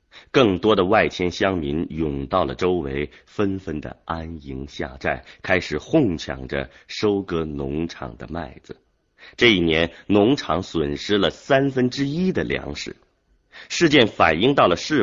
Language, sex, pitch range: Chinese, male, 70-100 Hz